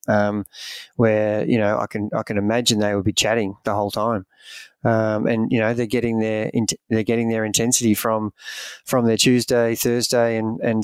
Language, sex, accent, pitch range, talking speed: English, male, Australian, 110-120 Hz, 195 wpm